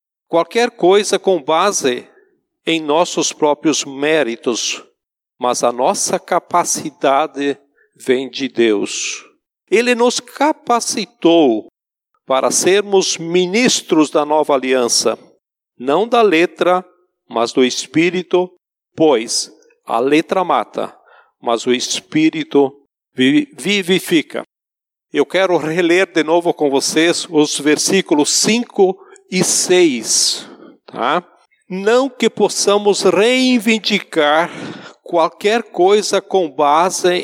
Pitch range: 155-230 Hz